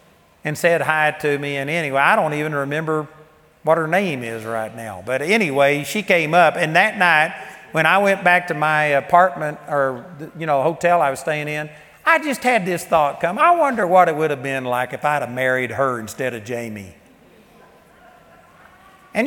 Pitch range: 145-200 Hz